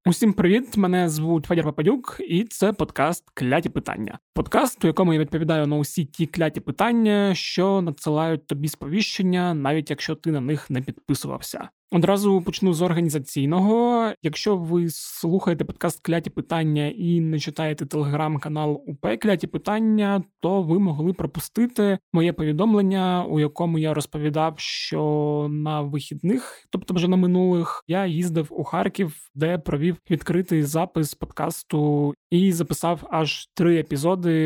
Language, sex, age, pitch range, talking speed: Ukrainian, male, 20-39, 150-185 Hz, 140 wpm